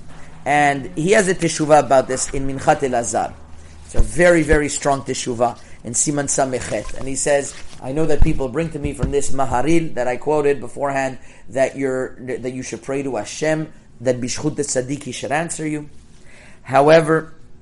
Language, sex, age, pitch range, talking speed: English, male, 30-49, 125-155 Hz, 175 wpm